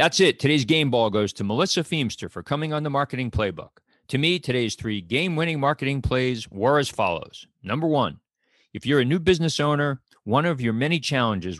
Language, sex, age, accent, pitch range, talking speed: English, male, 40-59, American, 100-140 Hz, 195 wpm